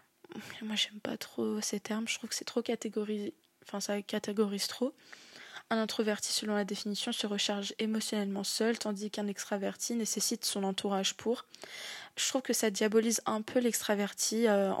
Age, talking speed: 20-39, 165 wpm